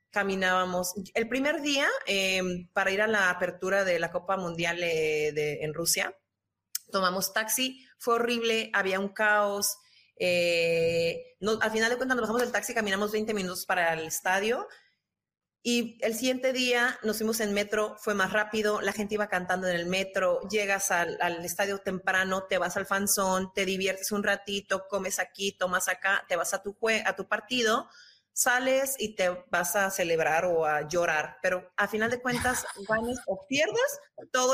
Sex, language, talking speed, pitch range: female, English, 175 wpm, 185-220 Hz